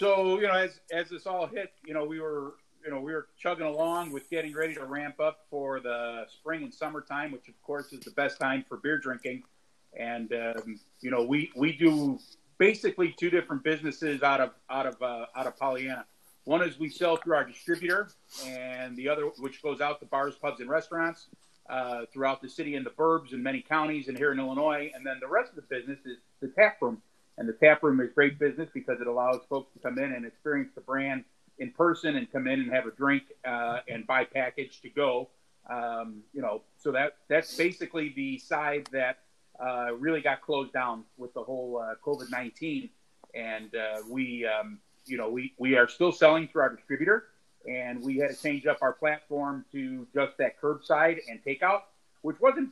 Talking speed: 210 wpm